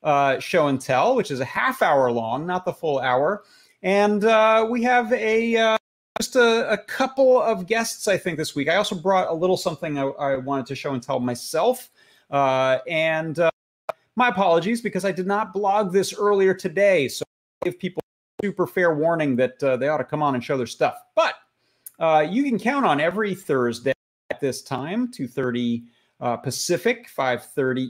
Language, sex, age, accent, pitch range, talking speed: English, male, 30-49, American, 135-205 Hz, 200 wpm